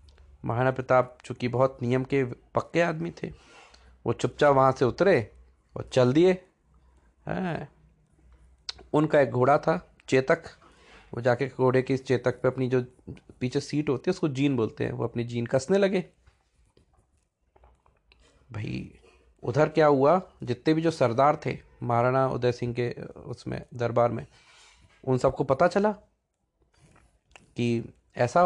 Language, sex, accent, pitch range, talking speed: Hindi, male, native, 115-150 Hz, 140 wpm